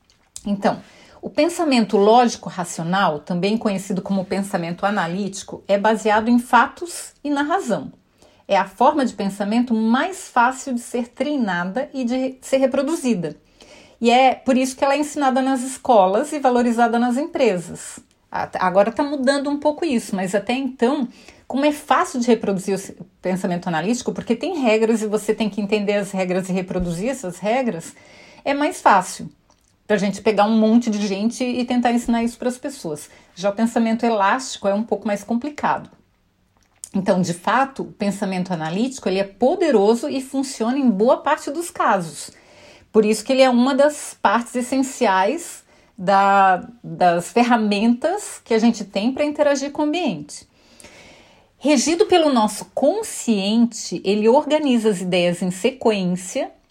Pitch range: 200-270 Hz